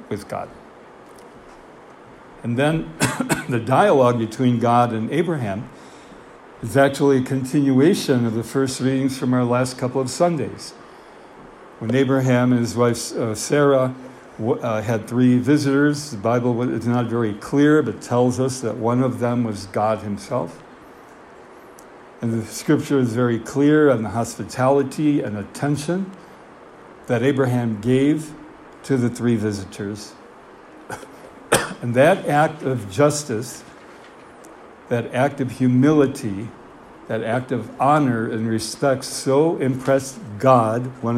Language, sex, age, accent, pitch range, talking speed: English, male, 60-79, American, 115-140 Hz, 125 wpm